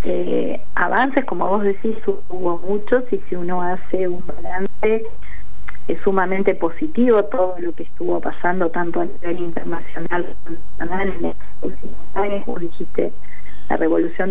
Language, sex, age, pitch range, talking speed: Spanish, female, 30-49, 165-190 Hz, 135 wpm